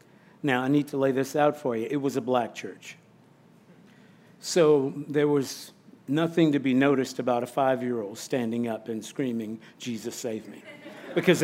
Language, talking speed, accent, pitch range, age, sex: English, 170 wpm, American, 130-160 Hz, 50-69, male